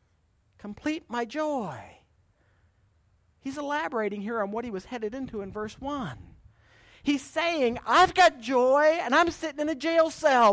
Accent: American